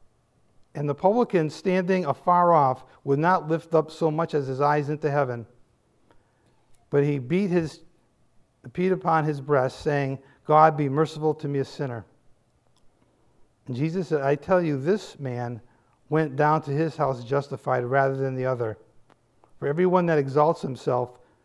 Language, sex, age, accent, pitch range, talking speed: English, male, 50-69, American, 135-180 Hz, 155 wpm